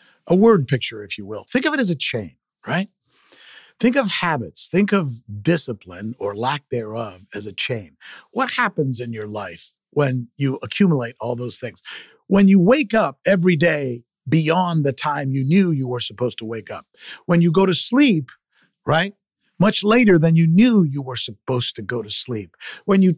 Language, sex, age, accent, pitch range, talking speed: English, male, 50-69, American, 125-195 Hz, 190 wpm